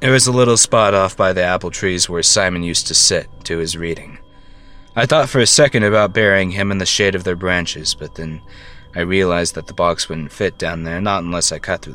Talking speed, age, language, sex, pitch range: 240 wpm, 30-49, English, male, 85-105 Hz